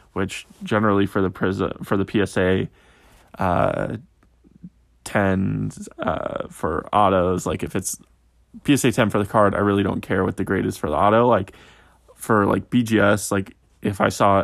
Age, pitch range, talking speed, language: 20-39, 95-110 Hz, 165 wpm, English